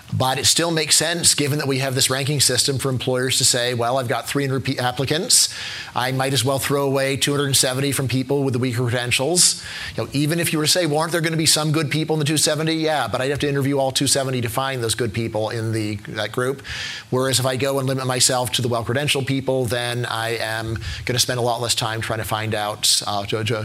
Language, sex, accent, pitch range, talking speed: English, male, American, 120-145 Hz, 245 wpm